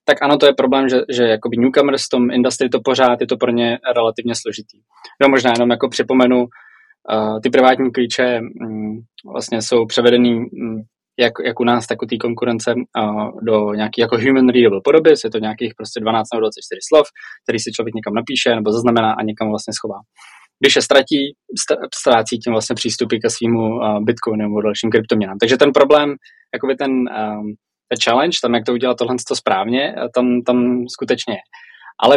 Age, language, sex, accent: 20-39, Czech, male, native